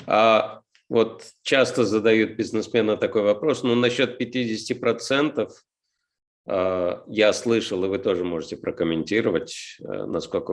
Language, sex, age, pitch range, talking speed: Russian, male, 50-69, 95-140 Hz, 105 wpm